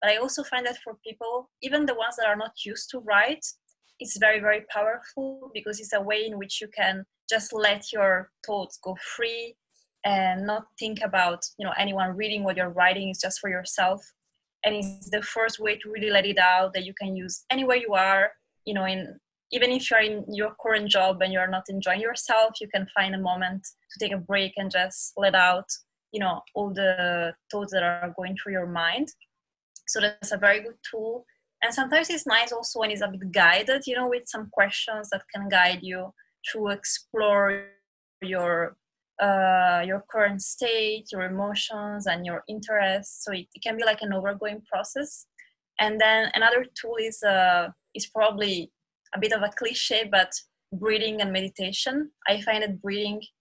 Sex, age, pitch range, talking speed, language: female, 20-39, 190-220 Hz, 195 wpm, English